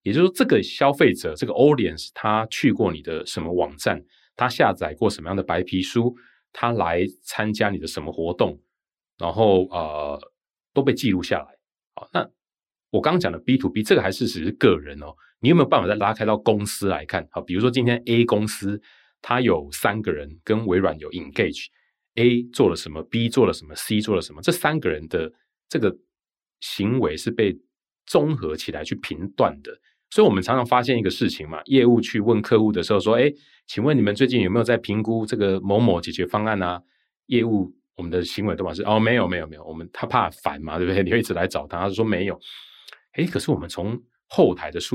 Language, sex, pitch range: Chinese, male, 95-120 Hz